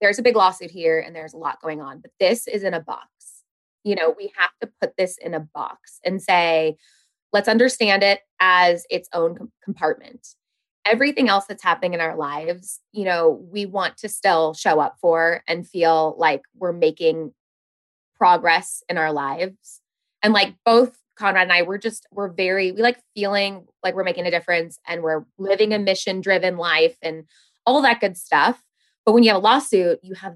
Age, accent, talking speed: 20-39, American, 195 wpm